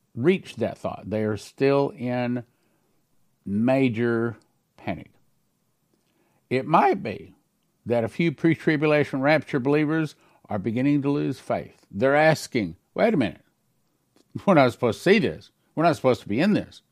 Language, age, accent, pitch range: English, 50-69, American, 115-155 Hz